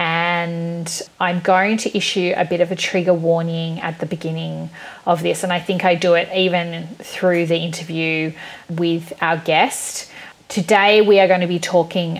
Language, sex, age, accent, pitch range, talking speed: English, female, 30-49, Australian, 170-195 Hz, 175 wpm